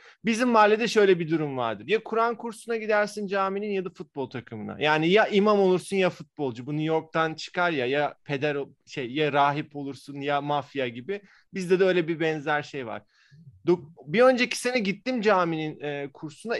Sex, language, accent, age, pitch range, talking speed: male, Turkish, native, 30-49, 145-195 Hz, 175 wpm